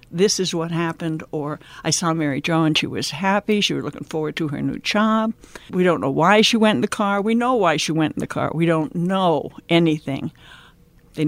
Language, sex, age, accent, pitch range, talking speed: English, female, 60-79, American, 155-195 Hz, 230 wpm